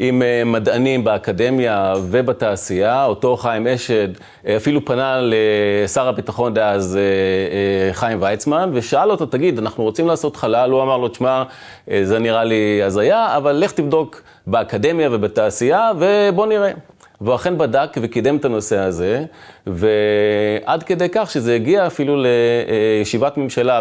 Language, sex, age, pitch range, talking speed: Hebrew, male, 30-49, 105-135 Hz, 130 wpm